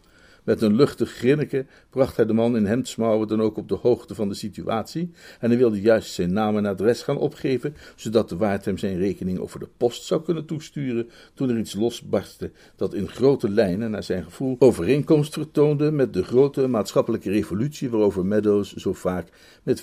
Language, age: Dutch, 50-69